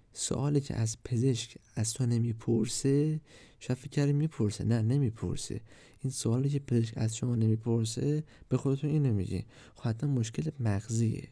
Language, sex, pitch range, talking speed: Persian, male, 110-135 Hz, 135 wpm